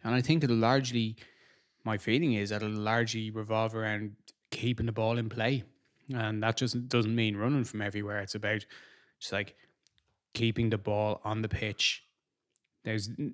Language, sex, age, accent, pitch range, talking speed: English, male, 20-39, Irish, 105-120 Hz, 170 wpm